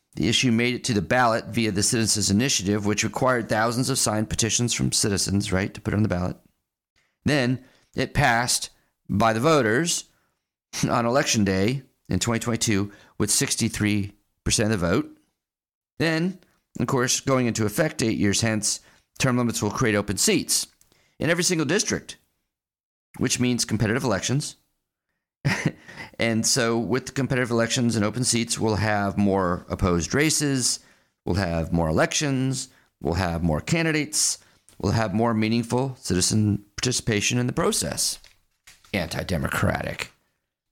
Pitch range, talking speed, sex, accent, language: 100-130 Hz, 140 wpm, male, American, English